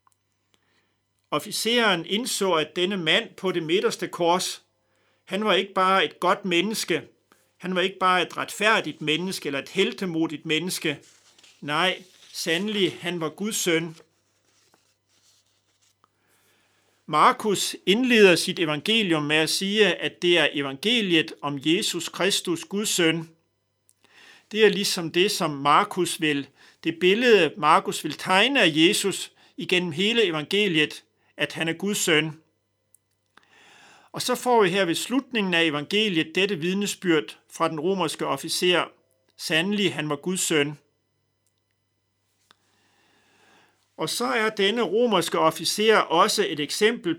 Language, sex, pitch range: Danish, male, 150-200 Hz